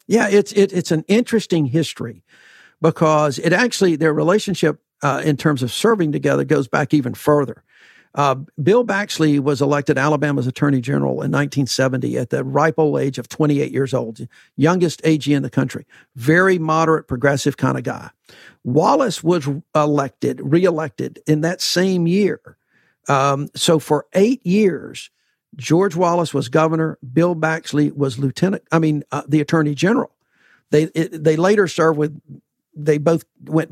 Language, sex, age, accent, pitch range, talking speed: English, male, 50-69, American, 145-175 Hz, 155 wpm